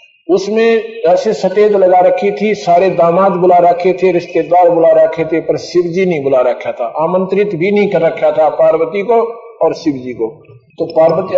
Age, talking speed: 50-69, 180 wpm